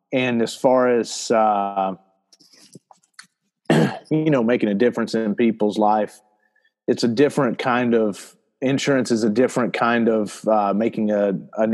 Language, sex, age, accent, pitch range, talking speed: English, male, 40-59, American, 105-120 Hz, 140 wpm